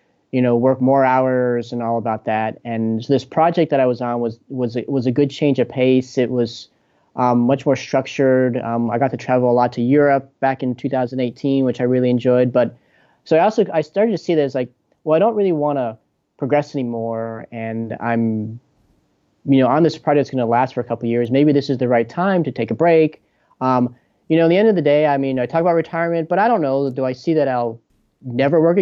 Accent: American